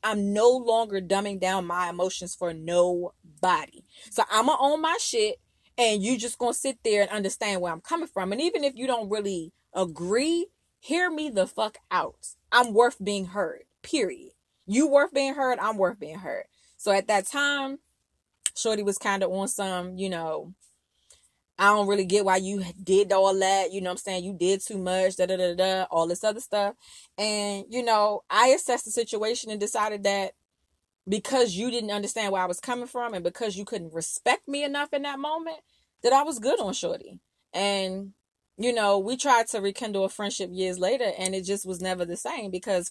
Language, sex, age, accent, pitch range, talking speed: English, female, 20-39, American, 185-245 Hz, 200 wpm